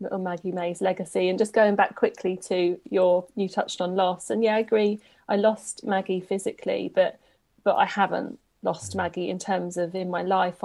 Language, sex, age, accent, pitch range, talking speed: English, female, 30-49, British, 180-205 Hz, 195 wpm